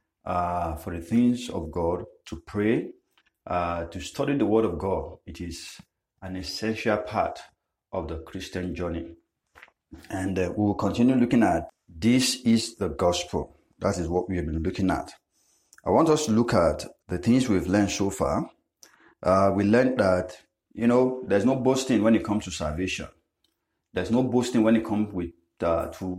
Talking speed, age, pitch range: 175 wpm, 50-69, 90-115 Hz